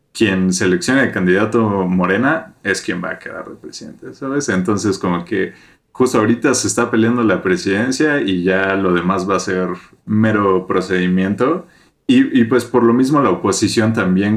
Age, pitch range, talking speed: 30-49, 95-120 Hz, 170 wpm